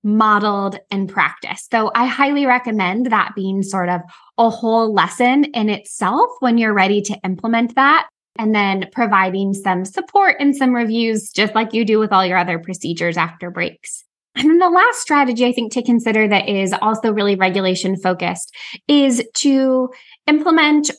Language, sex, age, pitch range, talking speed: English, female, 10-29, 200-260 Hz, 170 wpm